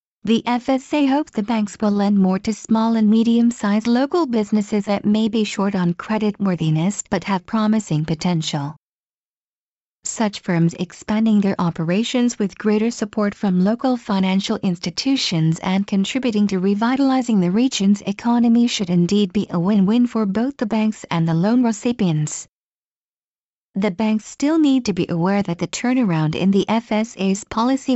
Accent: American